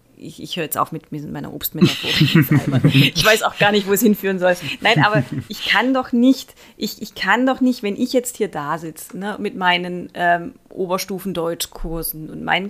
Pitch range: 170-215 Hz